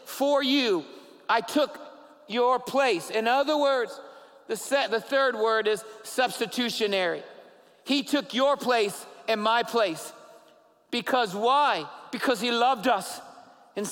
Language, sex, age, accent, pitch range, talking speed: English, male, 50-69, American, 230-280 Hz, 130 wpm